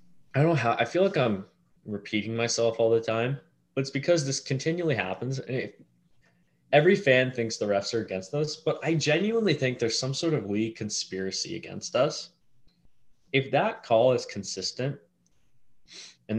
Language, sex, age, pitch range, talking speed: English, male, 20-39, 110-145 Hz, 165 wpm